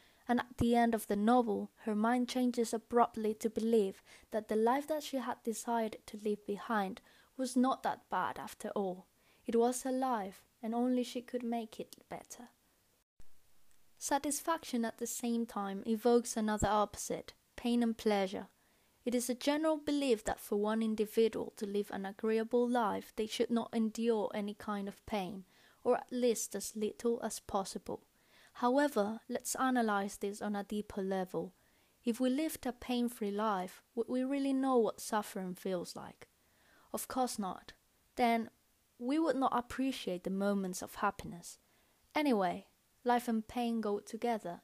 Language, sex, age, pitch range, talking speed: English, female, 10-29, 205-245 Hz, 160 wpm